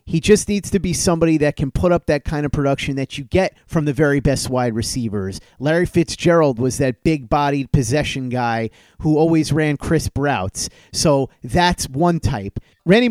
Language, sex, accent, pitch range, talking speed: English, male, American, 130-160 Hz, 190 wpm